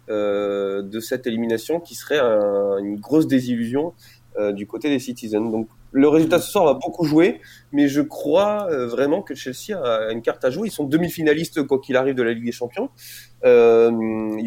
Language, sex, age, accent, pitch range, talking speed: French, male, 20-39, French, 110-145 Hz, 200 wpm